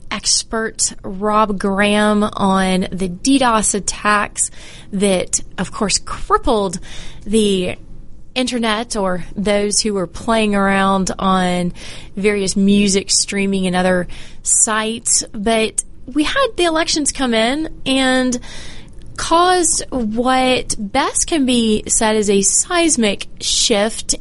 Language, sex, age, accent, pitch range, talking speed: English, female, 20-39, American, 200-255 Hz, 110 wpm